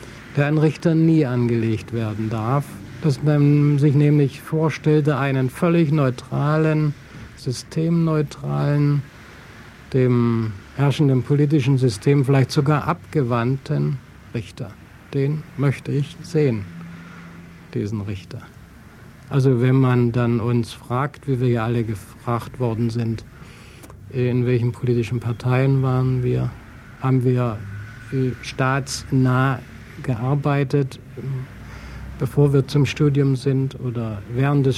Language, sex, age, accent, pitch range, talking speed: German, male, 60-79, German, 120-140 Hz, 105 wpm